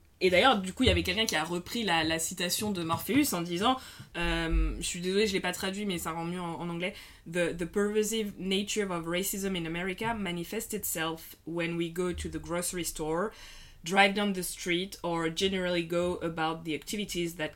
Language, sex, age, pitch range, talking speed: French, female, 20-39, 170-210 Hz, 210 wpm